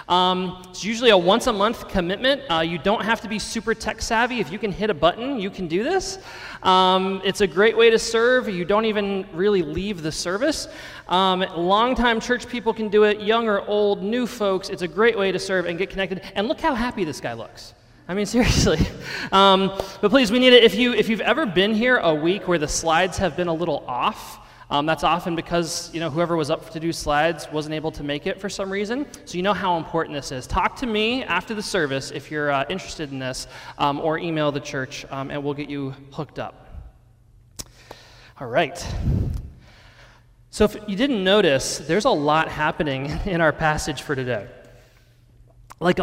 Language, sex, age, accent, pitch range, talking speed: English, male, 20-39, American, 155-215 Hz, 210 wpm